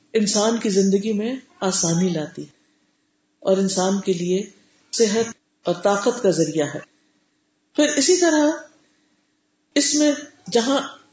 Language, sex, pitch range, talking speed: Urdu, female, 195-275 Hz, 125 wpm